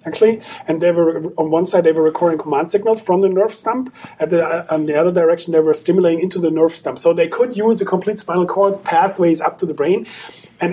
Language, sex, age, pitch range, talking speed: English, male, 40-59, 165-200 Hz, 245 wpm